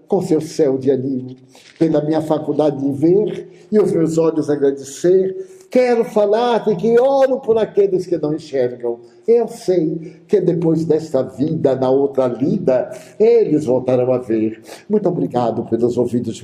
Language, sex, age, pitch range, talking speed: Portuguese, male, 60-79, 135-215 Hz, 155 wpm